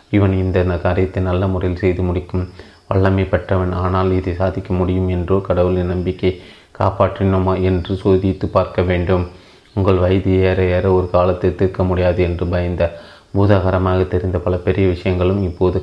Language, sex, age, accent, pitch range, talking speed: Tamil, male, 30-49, native, 90-95 Hz, 140 wpm